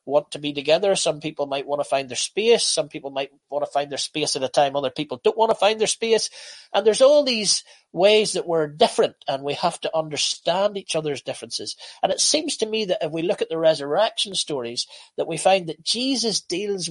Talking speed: 235 wpm